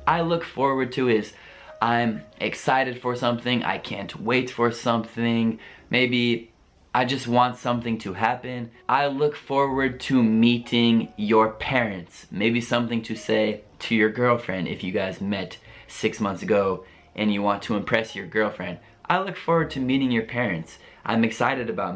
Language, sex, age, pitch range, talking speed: Italian, male, 20-39, 110-130 Hz, 160 wpm